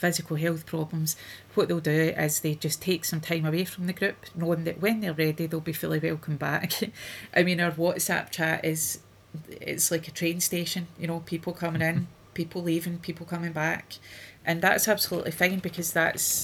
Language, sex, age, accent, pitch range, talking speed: English, female, 30-49, British, 155-175 Hz, 195 wpm